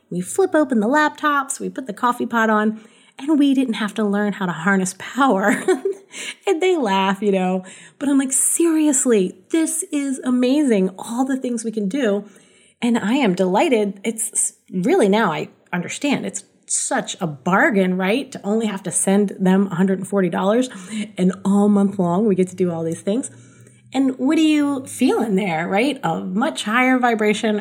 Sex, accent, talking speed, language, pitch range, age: female, American, 180 wpm, English, 185-240 Hz, 30-49